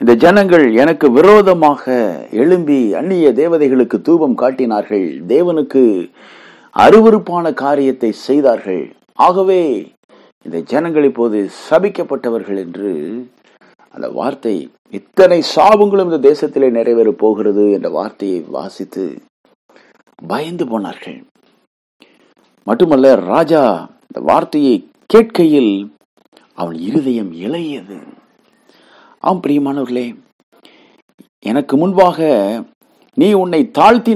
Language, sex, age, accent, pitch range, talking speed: English, male, 60-79, Indian, 120-190 Hz, 85 wpm